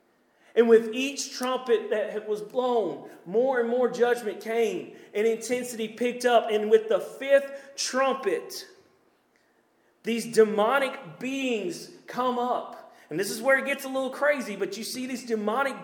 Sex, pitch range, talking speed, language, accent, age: male, 225-270 Hz, 150 wpm, English, American, 40-59